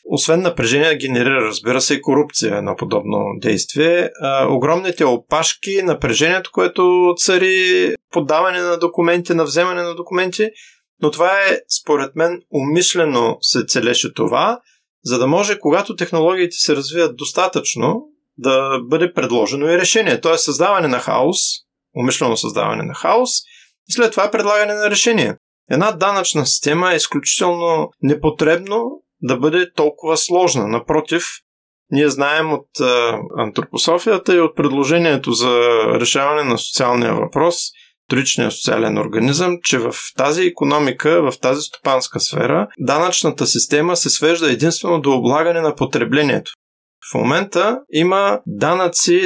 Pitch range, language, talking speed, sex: 145-180 Hz, Bulgarian, 135 wpm, male